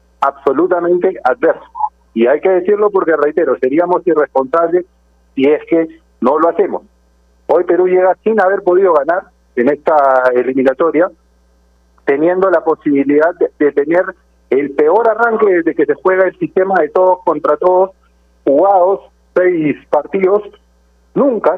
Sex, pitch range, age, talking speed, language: male, 135-185 Hz, 40-59, 135 wpm, Spanish